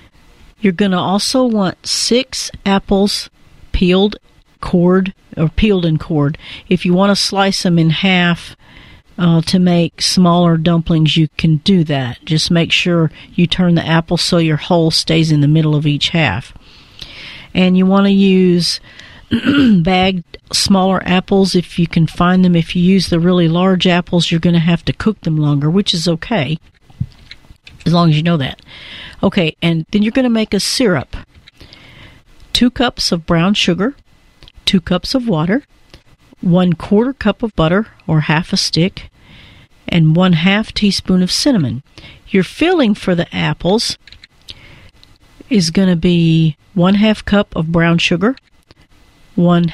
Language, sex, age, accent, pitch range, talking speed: English, female, 50-69, American, 165-195 Hz, 160 wpm